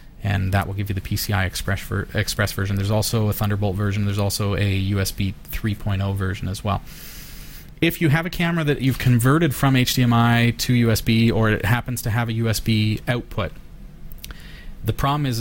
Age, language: 30-49, English